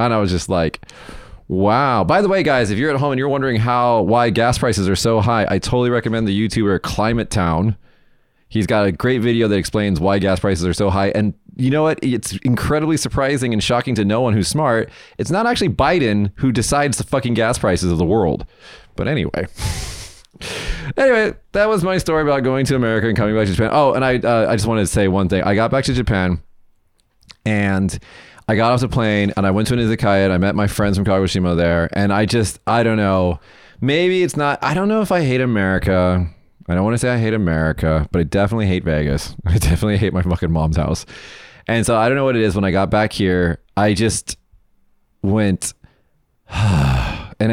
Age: 30-49